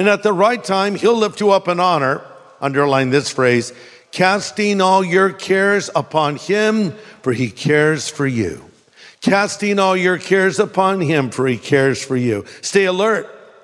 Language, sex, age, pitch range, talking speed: English, male, 50-69, 160-205 Hz, 165 wpm